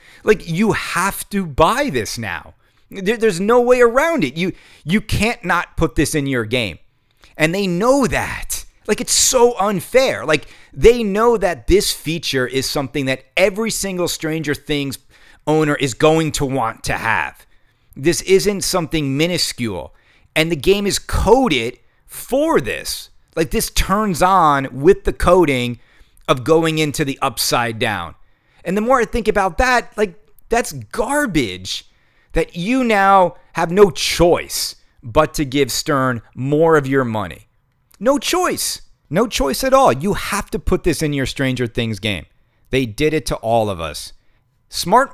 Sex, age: male, 30-49